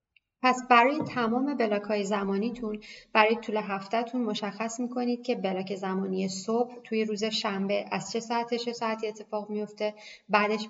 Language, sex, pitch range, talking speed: Persian, female, 190-230 Hz, 150 wpm